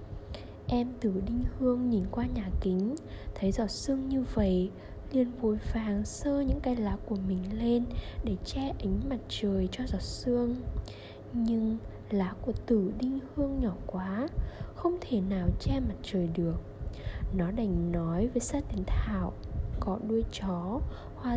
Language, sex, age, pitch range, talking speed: Vietnamese, female, 10-29, 190-255 Hz, 160 wpm